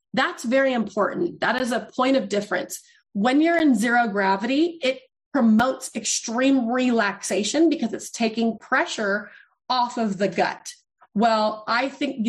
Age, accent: 30-49, American